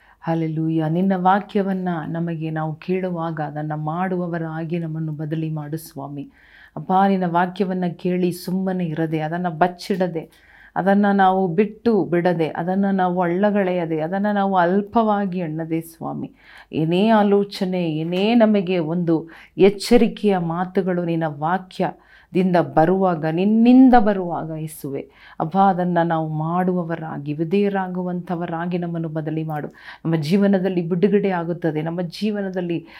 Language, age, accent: Kannada, 40-59, native